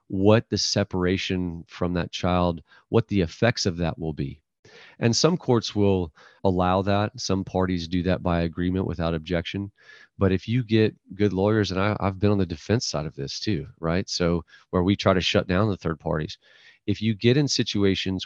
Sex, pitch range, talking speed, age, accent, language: male, 85-100 Hz, 195 wpm, 40-59, American, English